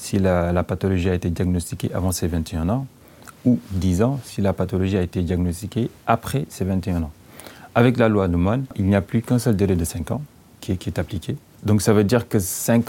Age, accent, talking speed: 40-59, French, 225 wpm